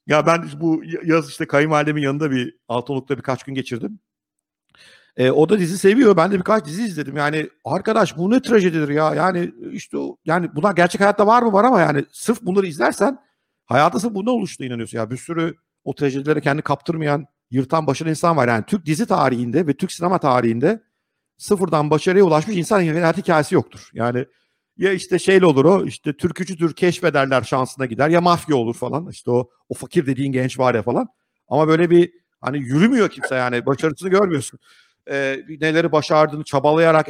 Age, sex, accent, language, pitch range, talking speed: 50-69, male, native, Turkish, 135-175 Hz, 180 wpm